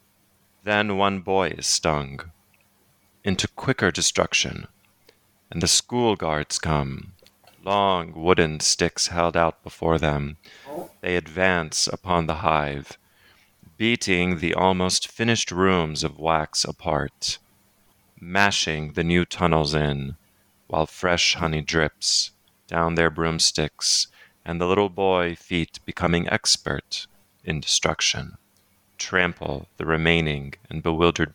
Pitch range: 80-100 Hz